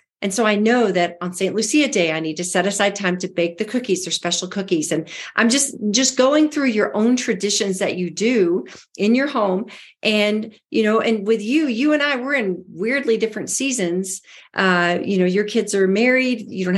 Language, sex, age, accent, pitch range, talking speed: English, female, 40-59, American, 185-235 Hz, 215 wpm